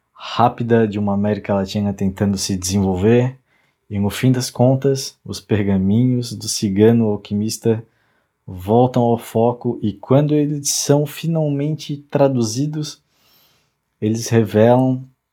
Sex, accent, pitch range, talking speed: male, Brazilian, 100-115 Hz, 115 wpm